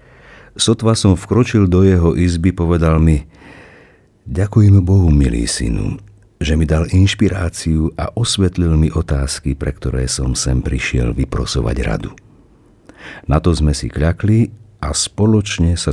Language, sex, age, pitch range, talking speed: Slovak, male, 50-69, 75-100 Hz, 130 wpm